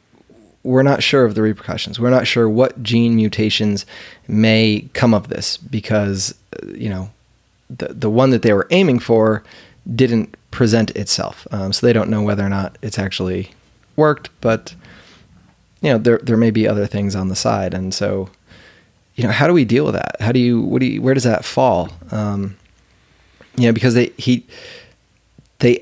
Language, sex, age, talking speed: English, male, 20-39, 185 wpm